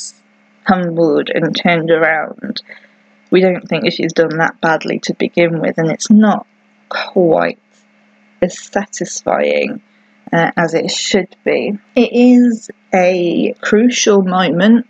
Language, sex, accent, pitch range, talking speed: English, female, British, 170-235 Hz, 125 wpm